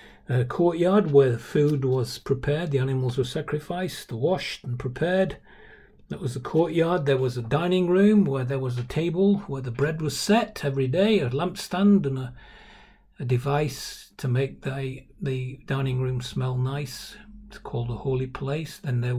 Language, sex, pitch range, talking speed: English, male, 125-150 Hz, 170 wpm